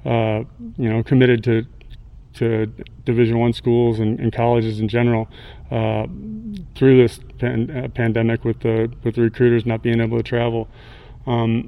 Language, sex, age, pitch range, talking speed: English, male, 30-49, 115-125 Hz, 160 wpm